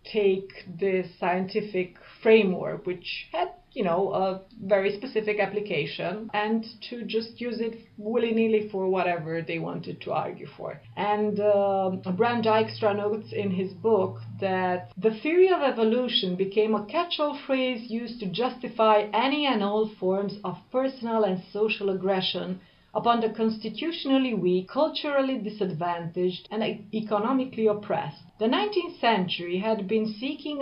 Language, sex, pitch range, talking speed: English, female, 185-225 Hz, 135 wpm